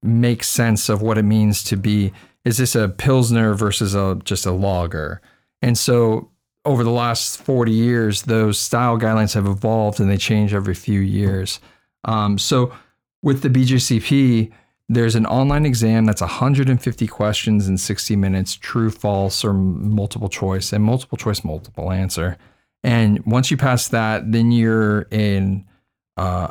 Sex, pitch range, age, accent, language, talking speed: male, 105-125 Hz, 40-59, American, English, 155 wpm